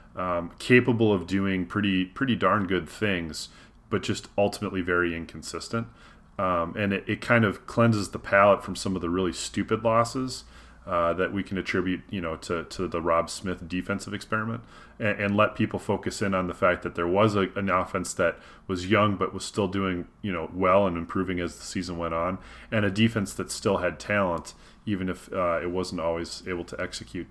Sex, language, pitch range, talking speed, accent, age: male, English, 90-110 Hz, 200 wpm, American, 30-49